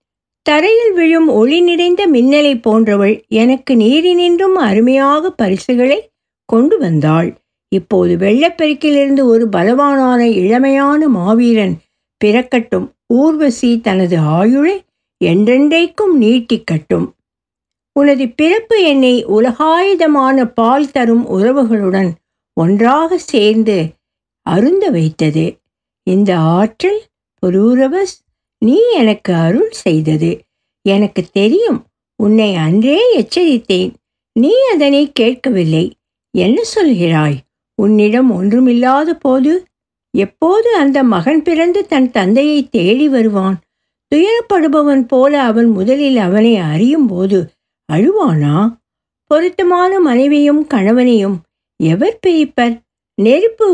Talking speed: 85 wpm